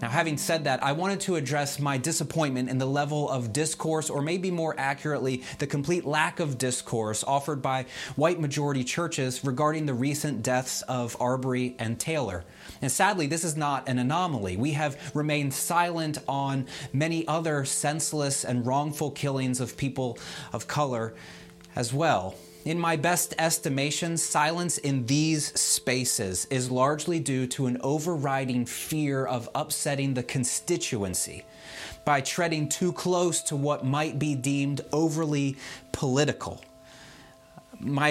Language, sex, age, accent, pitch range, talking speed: English, male, 30-49, American, 130-155 Hz, 145 wpm